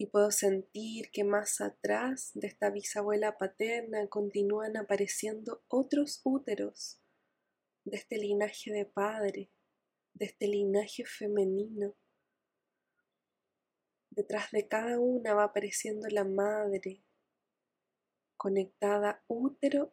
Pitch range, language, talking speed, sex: 195-220 Hz, Spanish, 100 wpm, female